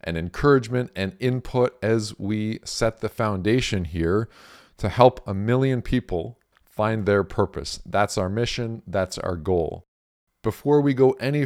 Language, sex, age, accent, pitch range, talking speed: English, male, 40-59, American, 100-130 Hz, 145 wpm